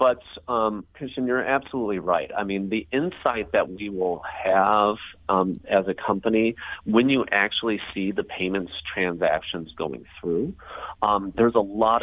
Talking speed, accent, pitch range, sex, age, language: 155 wpm, American, 85-110 Hz, male, 40-59, English